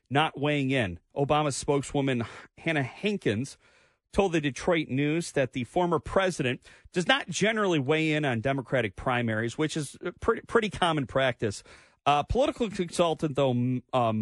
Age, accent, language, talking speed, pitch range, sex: 40-59, American, English, 145 wpm, 115-150 Hz, male